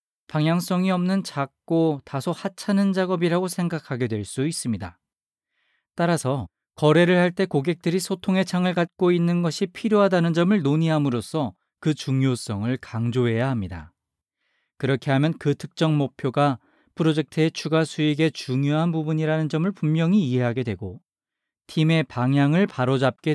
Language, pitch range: Korean, 130-160 Hz